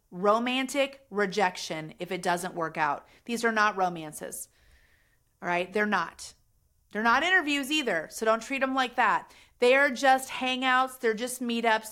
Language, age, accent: English, 30-49, American